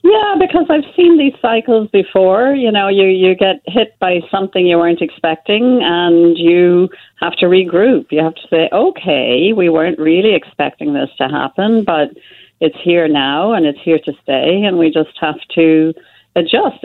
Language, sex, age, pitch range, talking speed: English, female, 50-69, 160-190 Hz, 180 wpm